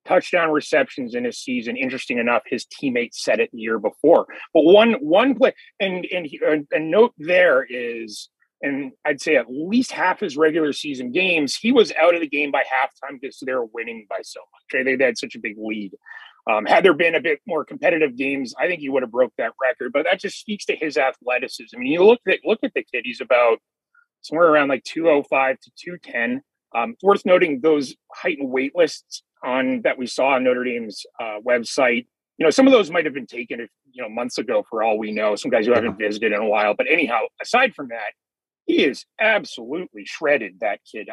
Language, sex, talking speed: English, male, 230 wpm